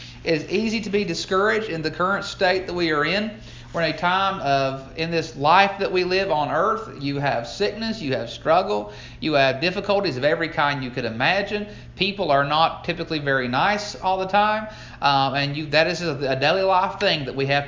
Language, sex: English, male